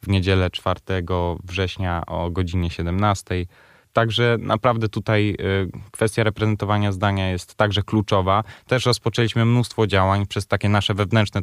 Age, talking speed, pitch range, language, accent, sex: 20-39, 125 wpm, 95-110 Hz, Polish, native, male